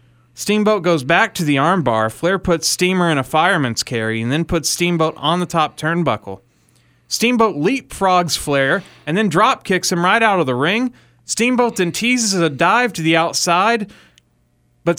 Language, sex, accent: English, male, American